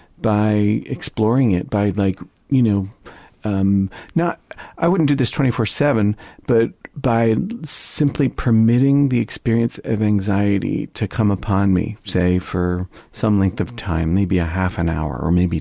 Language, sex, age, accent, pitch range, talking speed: English, male, 40-59, American, 95-110 Hz, 155 wpm